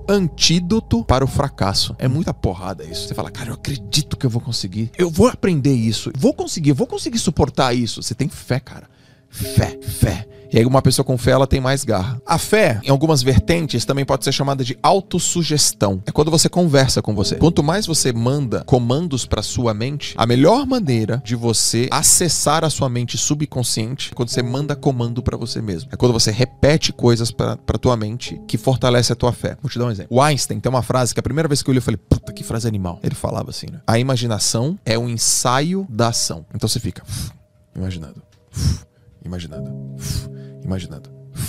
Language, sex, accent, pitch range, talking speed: Portuguese, male, Brazilian, 115-140 Hz, 205 wpm